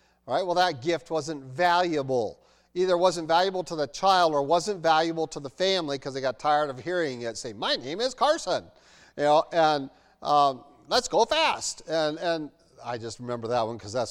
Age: 40-59